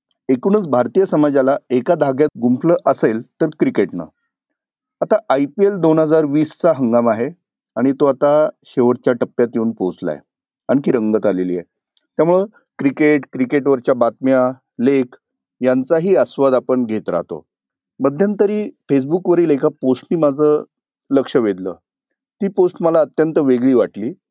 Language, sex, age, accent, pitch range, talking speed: Marathi, male, 40-59, native, 130-175 Hz, 130 wpm